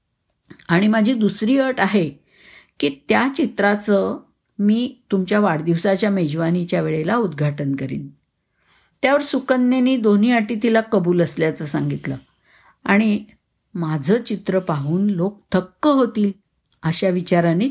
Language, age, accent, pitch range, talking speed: Marathi, 50-69, native, 170-210 Hz, 110 wpm